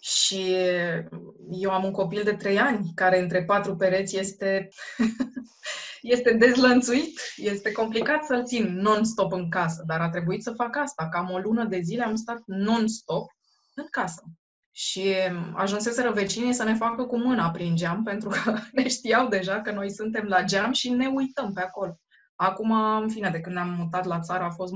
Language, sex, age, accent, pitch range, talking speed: Romanian, female, 20-39, native, 185-230 Hz, 180 wpm